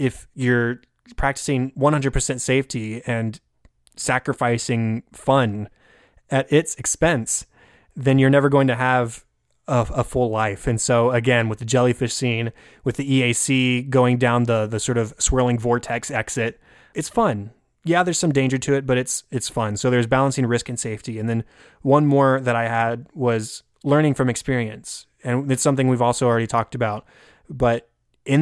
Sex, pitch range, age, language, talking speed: male, 115-135 Hz, 20-39, English, 165 wpm